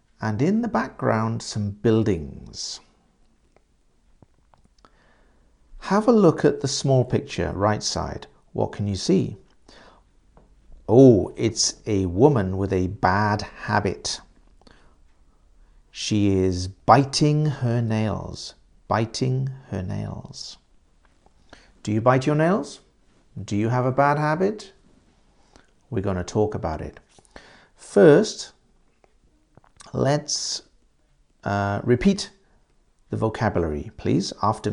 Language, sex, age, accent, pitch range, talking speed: English, male, 50-69, British, 90-135 Hz, 105 wpm